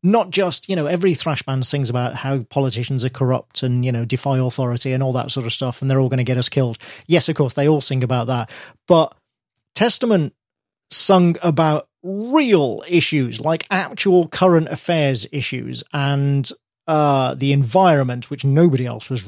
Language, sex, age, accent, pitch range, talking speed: English, male, 40-59, British, 135-165 Hz, 185 wpm